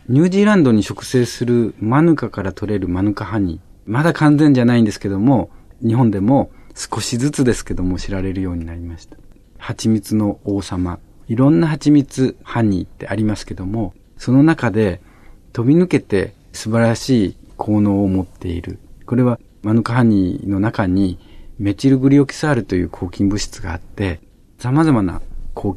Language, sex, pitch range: Japanese, male, 95-120 Hz